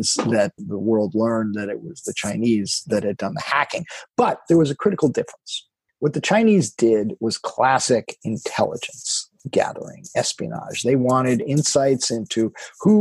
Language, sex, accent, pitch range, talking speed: English, male, American, 115-150 Hz, 155 wpm